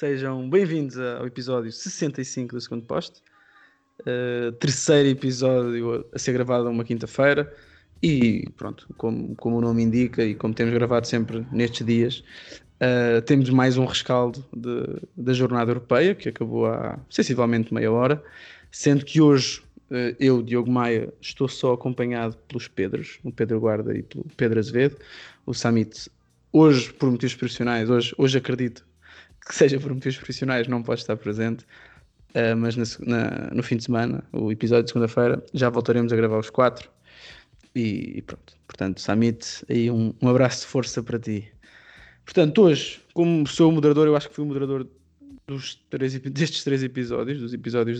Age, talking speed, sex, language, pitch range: 20-39, 165 wpm, male, Portuguese, 115-135 Hz